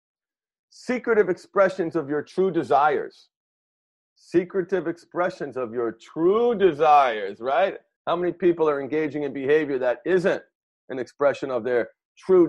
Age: 40-59